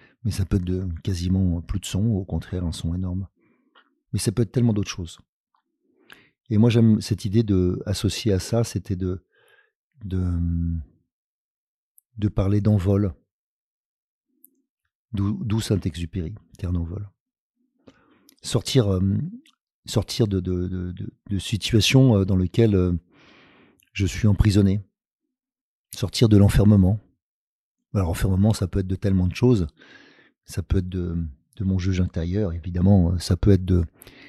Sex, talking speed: male, 135 wpm